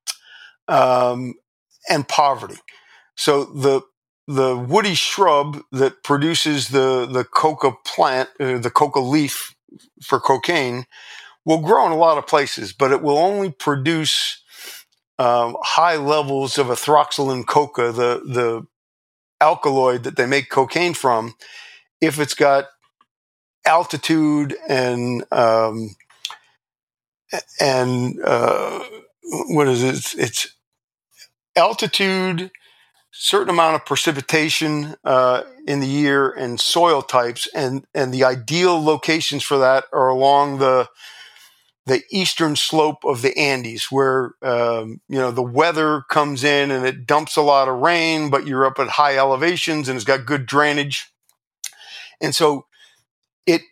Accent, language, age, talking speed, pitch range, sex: American, English, 50-69, 130 wpm, 130-155 Hz, male